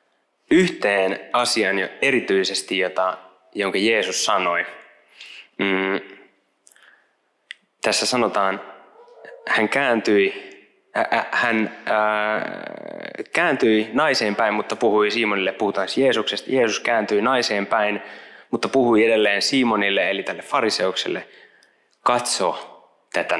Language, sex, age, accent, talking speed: Finnish, male, 20-39, native, 80 wpm